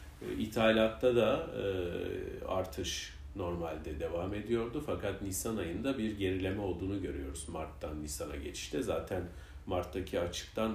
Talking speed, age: 110 wpm, 40-59